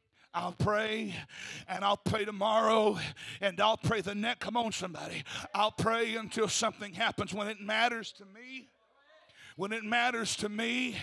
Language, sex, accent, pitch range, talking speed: English, male, American, 225-285 Hz, 160 wpm